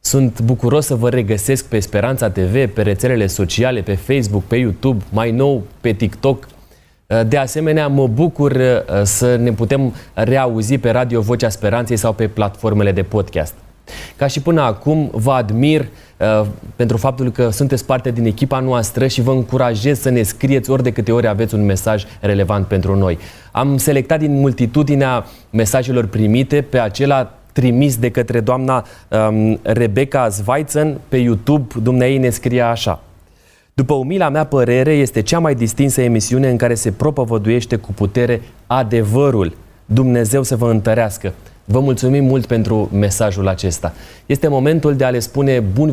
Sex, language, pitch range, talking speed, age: male, Romanian, 110-130 Hz, 155 wpm, 20-39